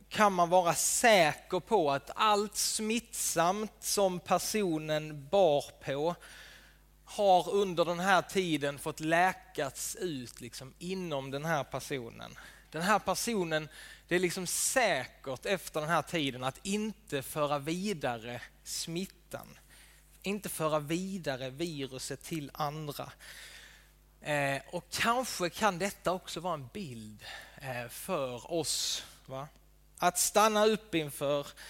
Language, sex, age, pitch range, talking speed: Swedish, male, 20-39, 145-195 Hz, 120 wpm